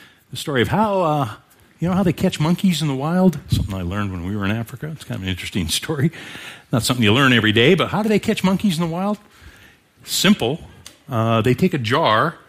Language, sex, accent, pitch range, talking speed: English, male, American, 105-150 Hz, 235 wpm